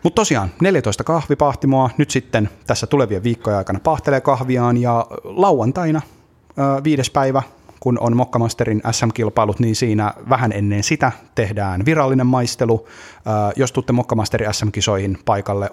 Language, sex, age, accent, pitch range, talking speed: Finnish, male, 30-49, native, 100-125 Hz, 135 wpm